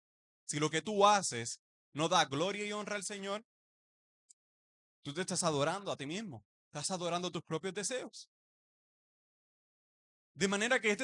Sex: male